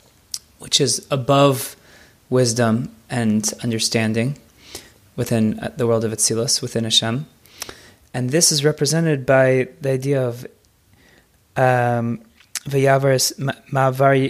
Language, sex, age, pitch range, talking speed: English, male, 20-39, 115-135 Hz, 90 wpm